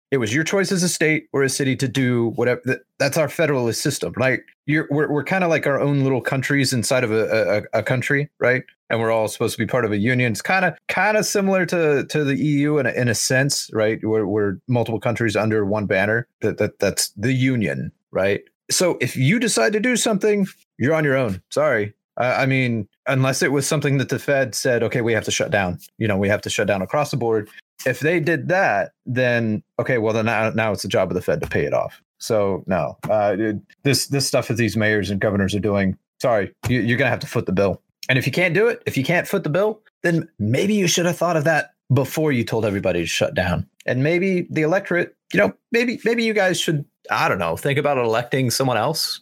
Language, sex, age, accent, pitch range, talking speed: English, male, 30-49, American, 110-160 Hz, 245 wpm